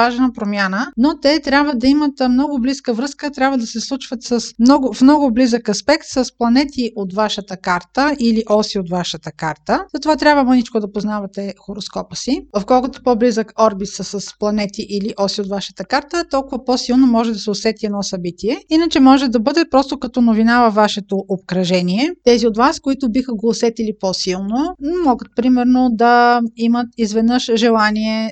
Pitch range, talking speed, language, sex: 220-265 Hz, 170 wpm, Bulgarian, female